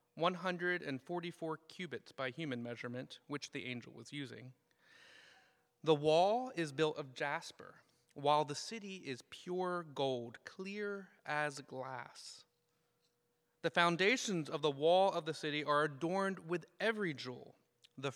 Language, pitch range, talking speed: English, 140-180 Hz, 130 wpm